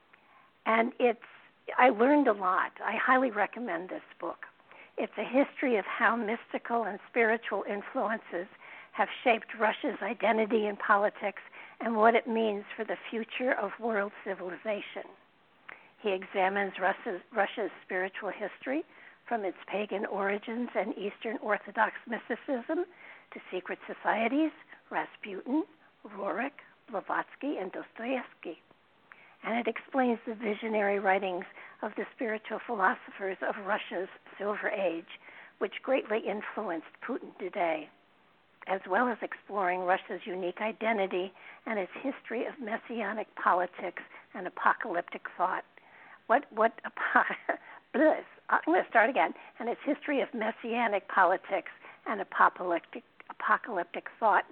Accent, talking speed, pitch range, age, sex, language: American, 120 wpm, 195-240 Hz, 60-79, female, English